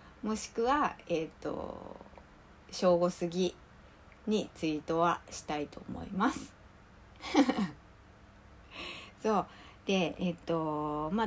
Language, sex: Japanese, female